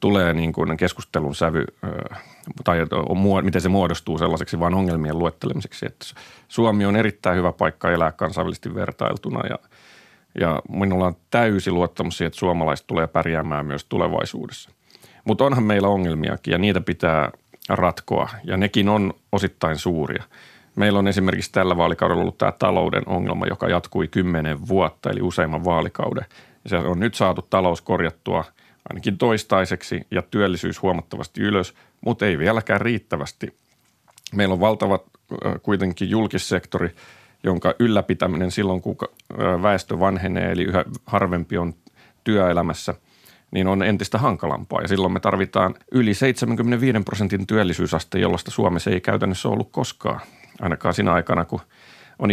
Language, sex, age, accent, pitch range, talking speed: Finnish, male, 30-49, native, 85-105 Hz, 140 wpm